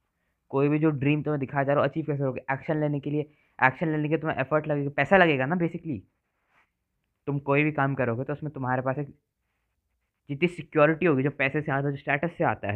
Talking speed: 220 wpm